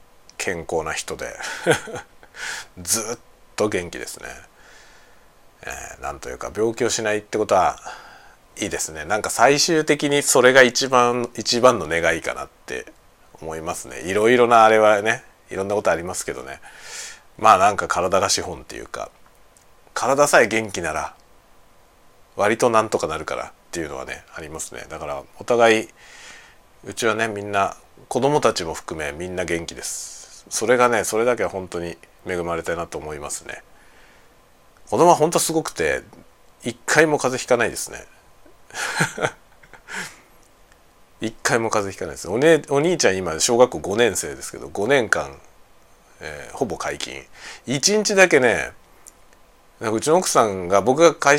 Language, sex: Japanese, male